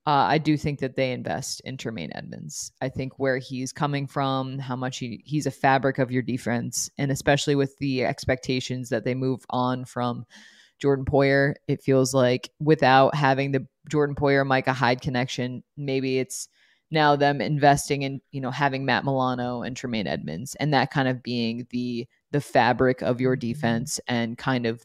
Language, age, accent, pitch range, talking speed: English, 20-39, American, 130-155 Hz, 185 wpm